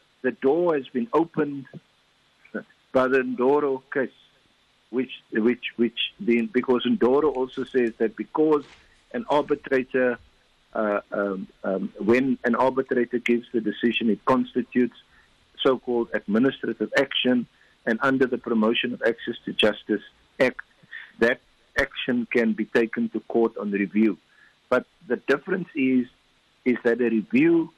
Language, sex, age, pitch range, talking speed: English, male, 50-69, 115-135 Hz, 135 wpm